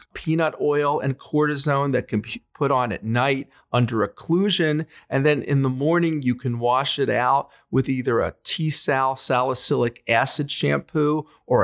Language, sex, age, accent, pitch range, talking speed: English, male, 40-59, American, 125-160 Hz, 160 wpm